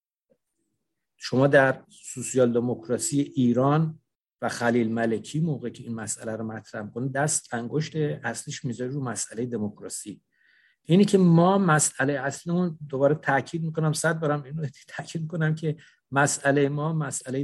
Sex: male